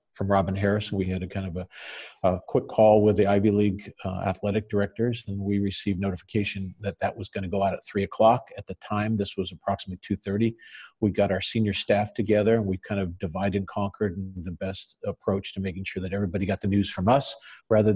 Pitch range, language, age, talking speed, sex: 95-105 Hz, English, 50-69, 230 wpm, male